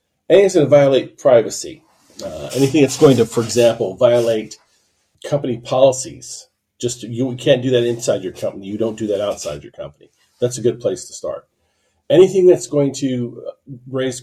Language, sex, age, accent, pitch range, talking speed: English, male, 40-59, American, 105-130 Hz, 175 wpm